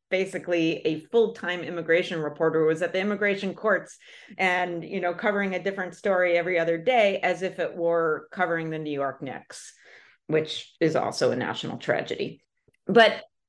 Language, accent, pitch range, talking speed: English, American, 170-235 Hz, 165 wpm